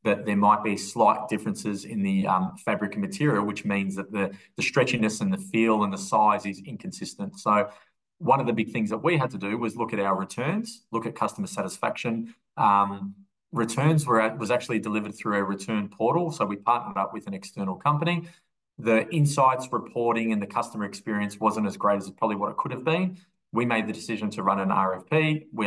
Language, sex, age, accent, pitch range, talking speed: English, male, 20-39, Australian, 105-130 Hz, 215 wpm